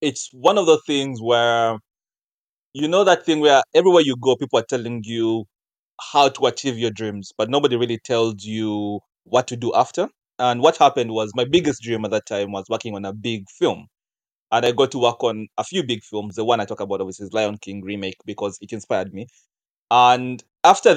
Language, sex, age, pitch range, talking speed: English, male, 30-49, 110-135 Hz, 210 wpm